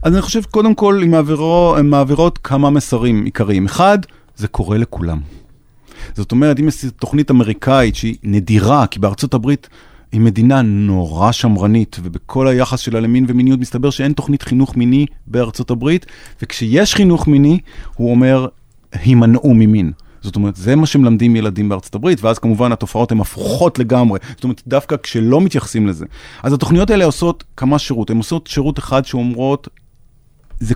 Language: Hebrew